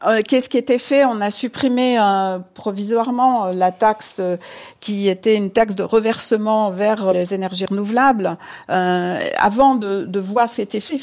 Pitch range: 185-230 Hz